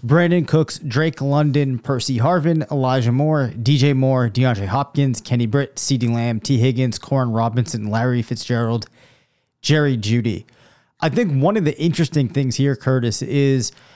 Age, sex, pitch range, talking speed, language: 30-49, male, 125-150 Hz, 145 wpm, English